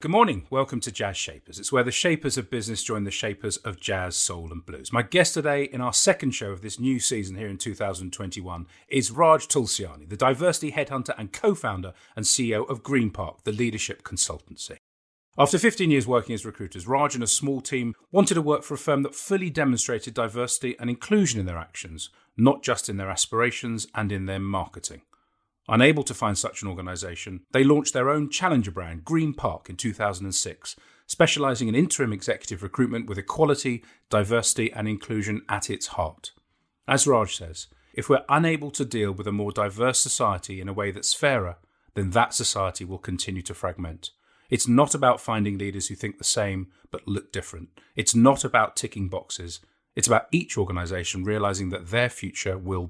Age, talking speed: 40-59, 185 wpm